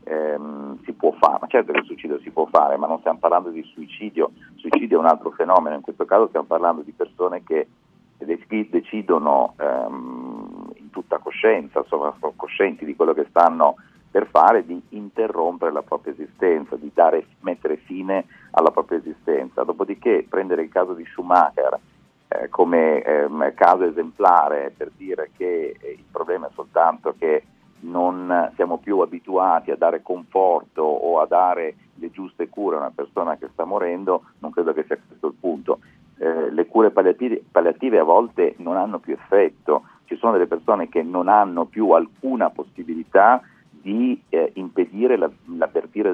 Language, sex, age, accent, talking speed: Italian, male, 40-59, native, 155 wpm